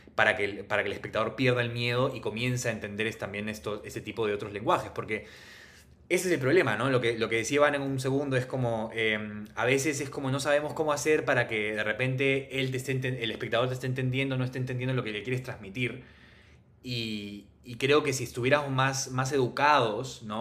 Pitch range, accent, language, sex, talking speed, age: 105-130 Hz, Argentinian, Spanish, male, 225 wpm, 20-39